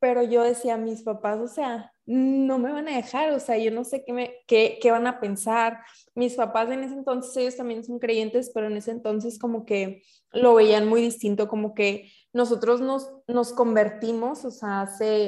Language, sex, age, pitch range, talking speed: Spanish, female, 20-39, 210-245 Hz, 205 wpm